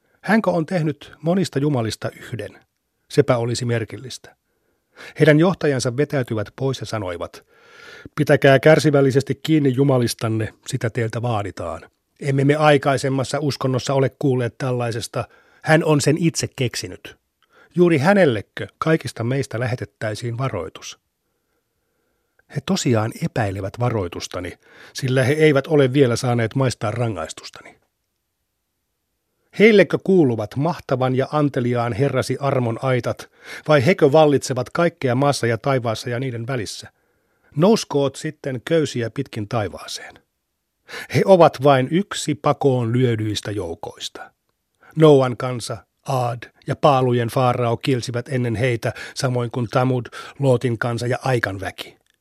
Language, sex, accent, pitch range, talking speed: Finnish, male, native, 120-145 Hz, 115 wpm